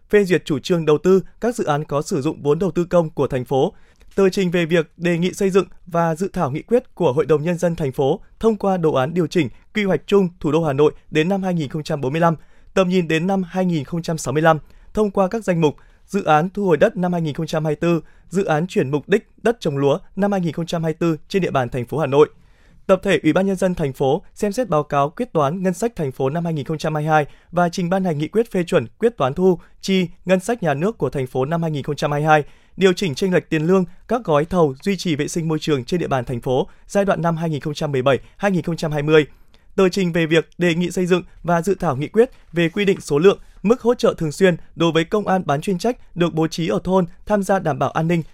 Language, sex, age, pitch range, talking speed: Vietnamese, male, 20-39, 155-190 Hz, 240 wpm